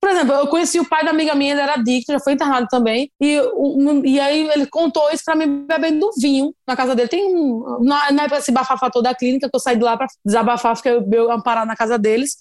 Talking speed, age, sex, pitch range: 260 wpm, 20-39, female, 235-295 Hz